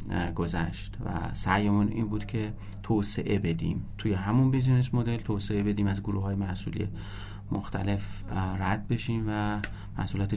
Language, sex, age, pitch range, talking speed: Persian, male, 30-49, 100-115 Hz, 135 wpm